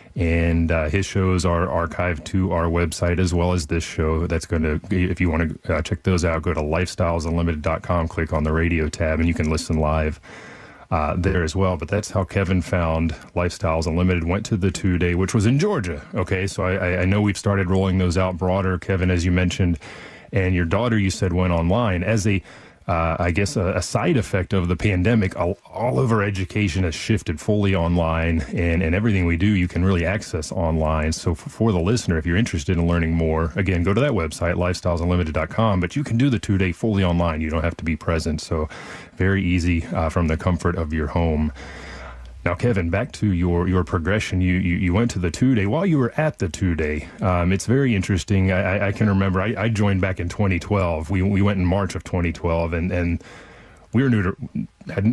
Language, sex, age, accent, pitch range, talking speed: English, male, 30-49, American, 85-100 Hz, 220 wpm